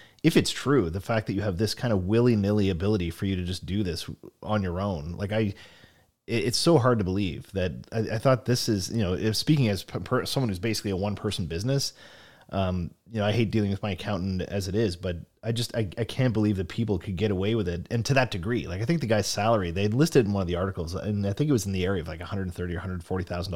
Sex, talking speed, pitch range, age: male, 265 wpm, 95-115 Hz, 30-49